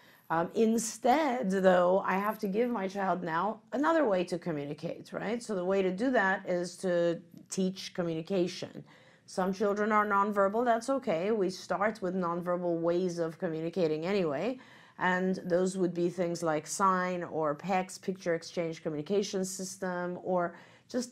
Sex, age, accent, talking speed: female, 40-59, American, 155 wpm